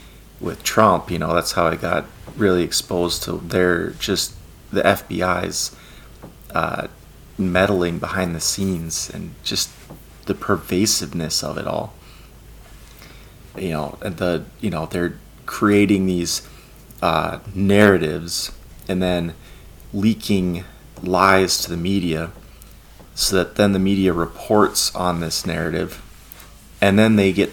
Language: English